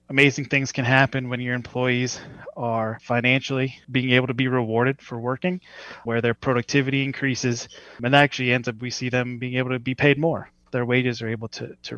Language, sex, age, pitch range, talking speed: English, male, 20-39, 110-125 Hz, 200 wpm